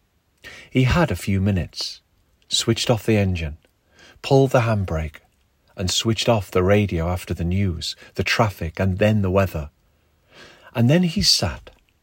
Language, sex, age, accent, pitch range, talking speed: English, male, 40-59, British, 90-115 Hz, 150 wpm